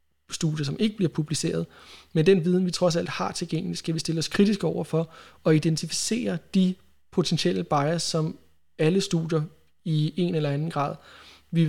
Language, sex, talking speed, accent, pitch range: Danish, male, 170 wpm, native, 150-175 Hz